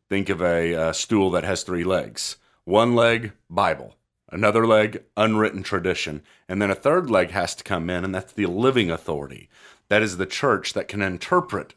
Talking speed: 190 wpm